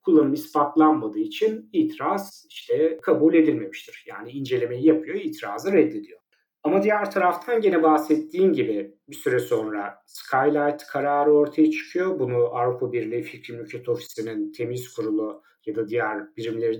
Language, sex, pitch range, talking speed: Turkish, male, 125-185 Hz, 125 wpm